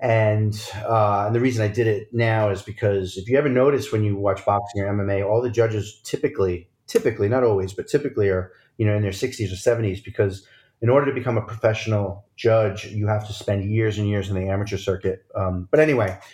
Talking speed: 215 wpm